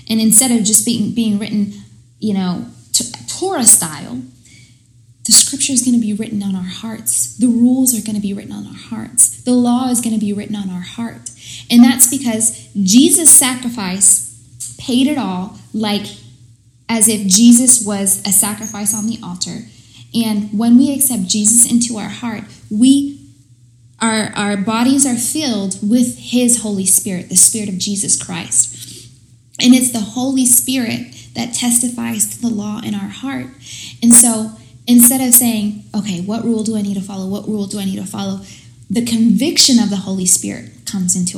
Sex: female